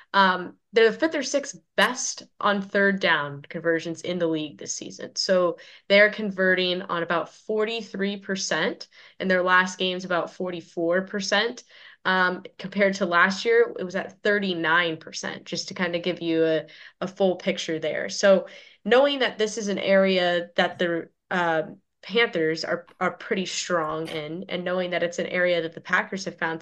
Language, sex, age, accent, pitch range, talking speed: English, female, 10-29, American, 170-200 Hz, 170 wpm